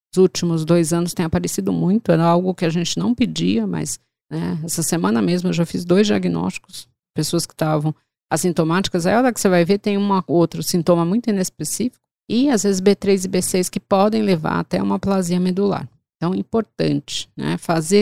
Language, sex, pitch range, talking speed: Portuguese, female, 170-210 Hz, 195 wpm